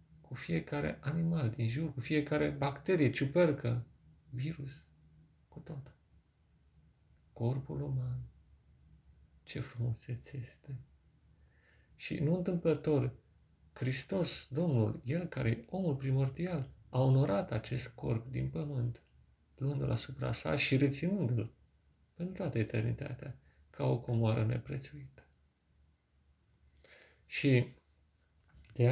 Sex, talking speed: male, 100 wpm